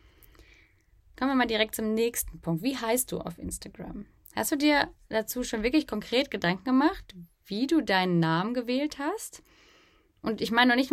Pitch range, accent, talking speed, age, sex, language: 195-265 Hz, German, 175 wpm, 20-39, female, German